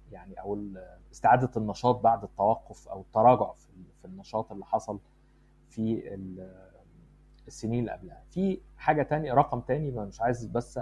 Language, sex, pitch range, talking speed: Arabic, male, 105-135 Hz, 140 wpm